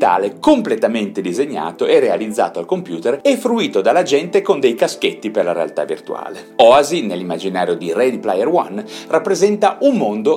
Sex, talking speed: male, 155 wpm